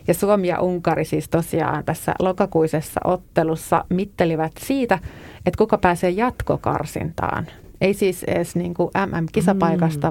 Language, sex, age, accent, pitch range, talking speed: Finnish, female, 30-49, native, 170-205 Hz, 115 wpm